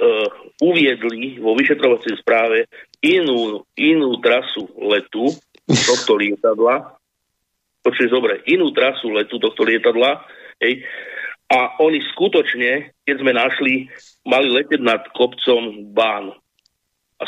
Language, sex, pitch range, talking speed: Slovak, male, 115-180 Hz, 105 wpm